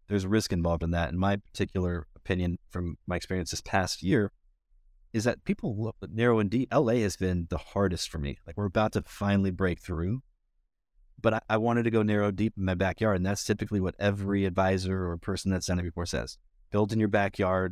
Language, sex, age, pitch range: English, male, 30-49, 85-100 Hz